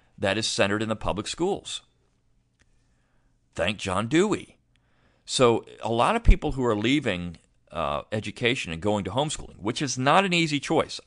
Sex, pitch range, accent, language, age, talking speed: male, 90-125 Hz, American, English, 40-59, 165 wpm